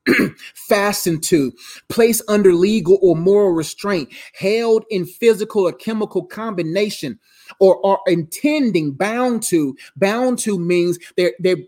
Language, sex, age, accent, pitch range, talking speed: English, male, 30-49, American, 180-225 Hz, 125 wpm